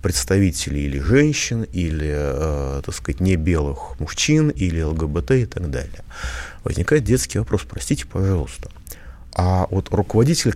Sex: male